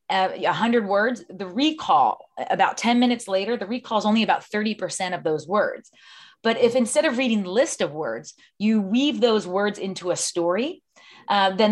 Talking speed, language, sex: 180 wpm, English, female